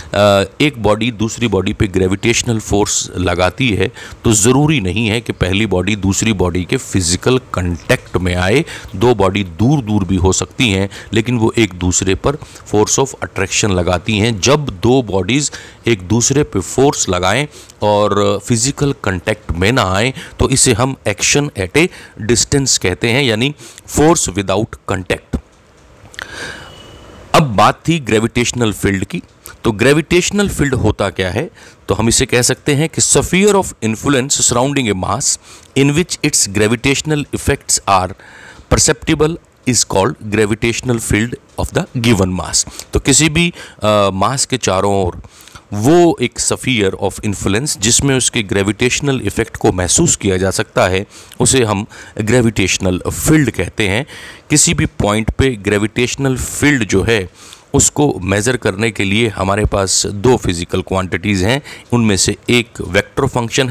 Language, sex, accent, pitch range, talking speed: Hindi, male, native, 95-130 Hz, 150 wpm